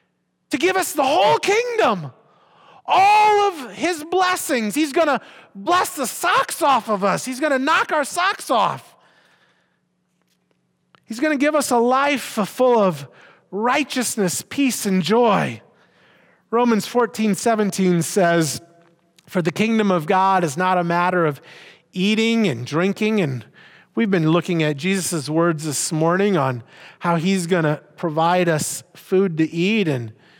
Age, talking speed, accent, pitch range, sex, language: 30-49, 150 wpm, American, 150-210 Hz, male, English